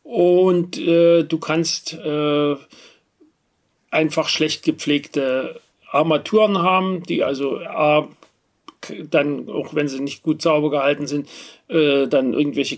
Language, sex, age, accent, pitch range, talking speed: German, male, 40-59, German, 145-165 Hz, 115 wpm